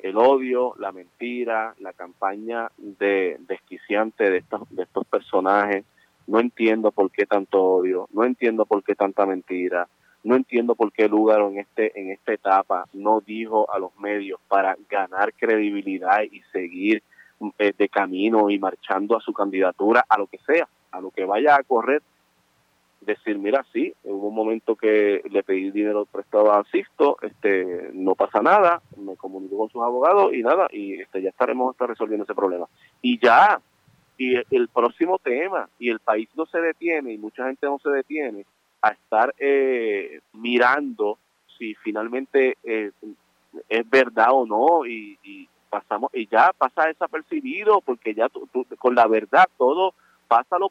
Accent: Venezuelan